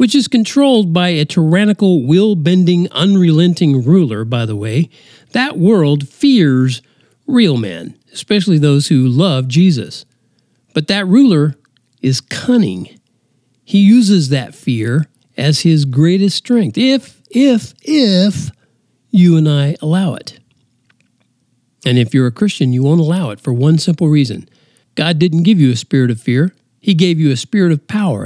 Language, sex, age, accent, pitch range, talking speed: English, male, 50-69, American, 125-185 Hz, 150 wpm